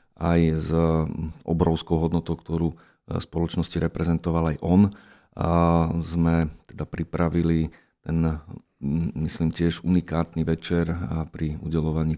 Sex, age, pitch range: male, 40-59, 80-90 Hz